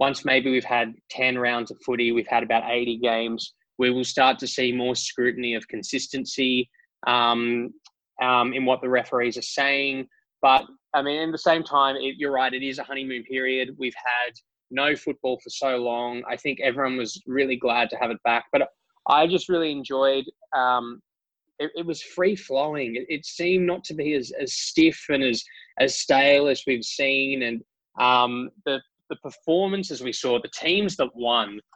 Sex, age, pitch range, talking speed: male, 20-39, 125-150 Hz, 190 wpm